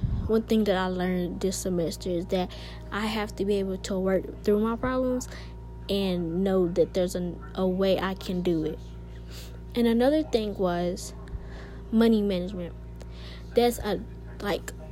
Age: 20-39